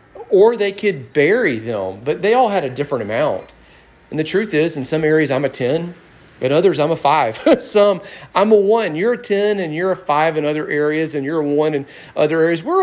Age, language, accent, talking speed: 40-59, English, American, 230 wpm